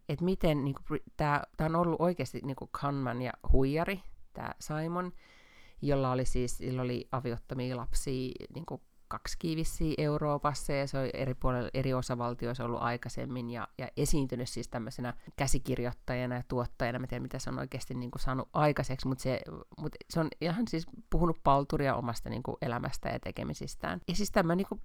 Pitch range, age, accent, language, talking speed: 125-150 Hz, 30-49, native, Finnish, 160 wpm